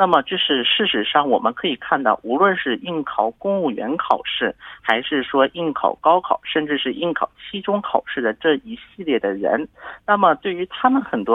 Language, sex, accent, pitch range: Korean, male, Chinese, 145-205 Hz